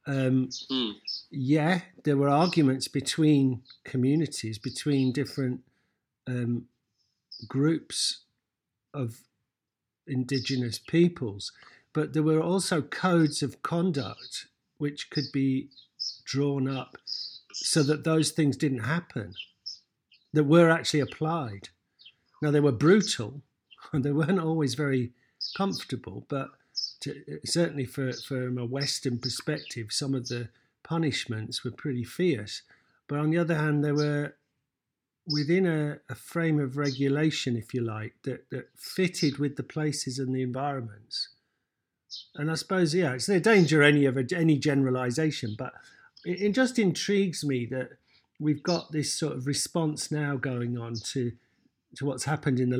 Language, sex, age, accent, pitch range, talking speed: English, male, 50-69, British, 125-155 Hz, 135 wpm